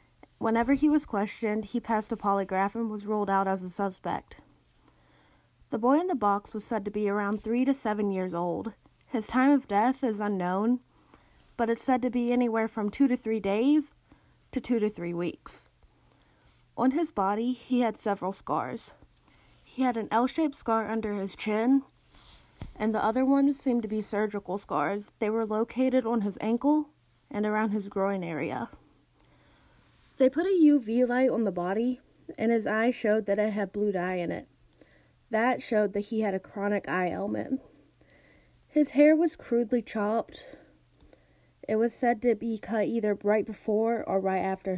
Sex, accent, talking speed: female, American, 175 wpm